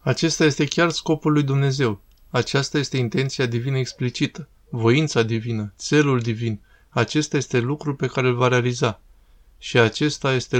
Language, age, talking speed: Romanian, 20-39, 145 wpm